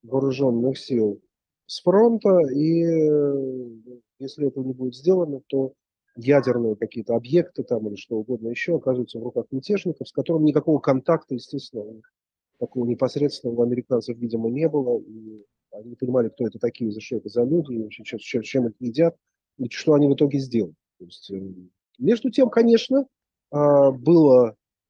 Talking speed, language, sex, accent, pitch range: 150 wpm, Russian, male, native, 110-145 Hz